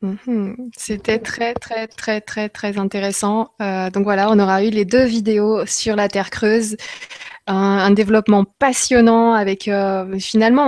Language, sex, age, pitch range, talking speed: French, female, 20-39, 210-250 Hz, 155 wpm